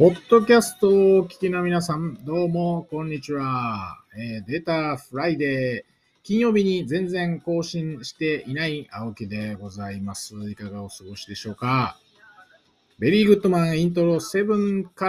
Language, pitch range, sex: Japanese, 105-170 Hz, male